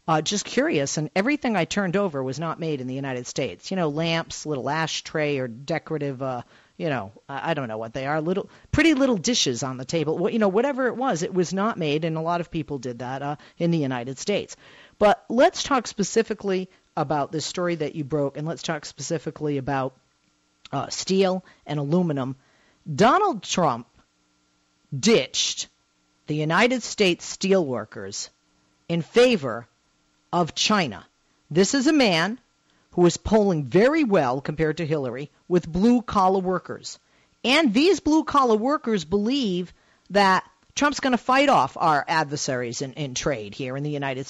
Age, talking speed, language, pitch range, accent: 40-59, 175 wpm, English, 140-220 Hz, American